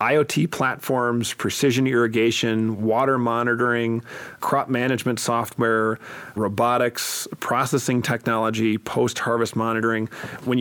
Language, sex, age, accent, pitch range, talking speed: English, male, 40-59, American, 110-125 Hz, 85 wpm